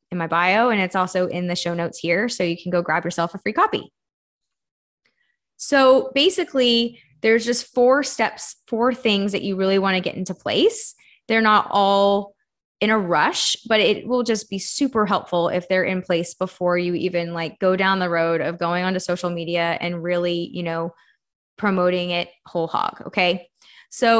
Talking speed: 190 wpm